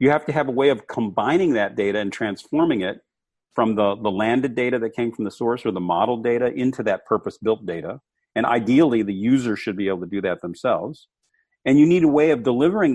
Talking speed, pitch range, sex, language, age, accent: 225 wpm, 105-155 Hz, male, English, 40-59, American